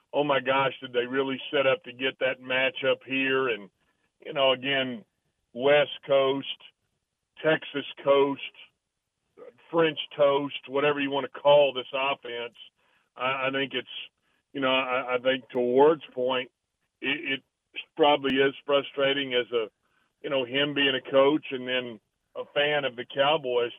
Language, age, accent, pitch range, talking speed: English, 40-59, American, 125-140 Hz, 155 wpm